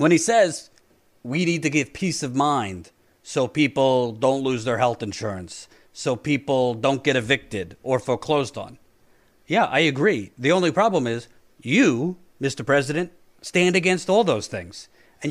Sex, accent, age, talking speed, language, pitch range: male, American, 40-59, 160 wpm, English, 125-180 Hz